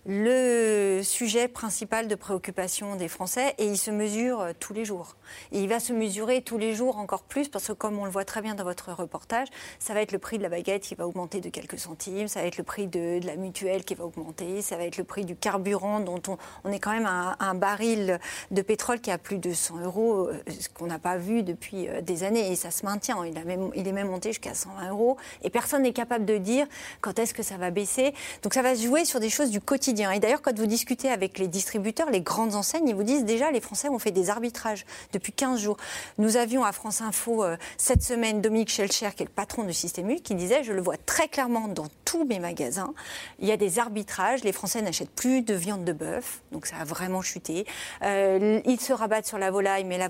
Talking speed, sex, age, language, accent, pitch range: 245 wpm, female, 40-59, French, French, 190-230 Hz